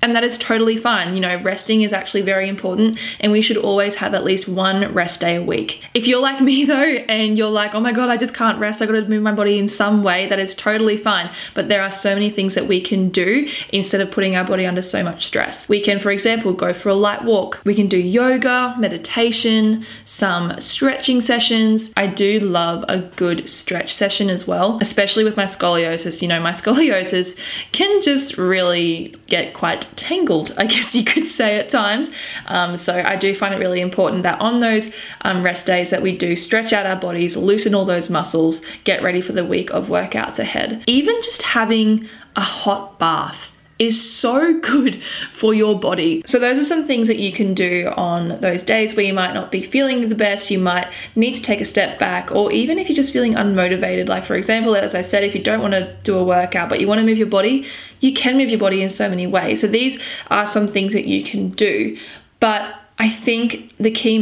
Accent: Australian